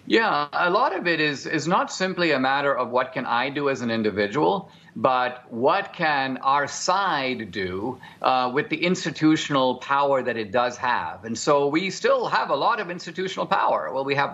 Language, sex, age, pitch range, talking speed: English, male, 50-69, 130-165 Hz, 195 wpm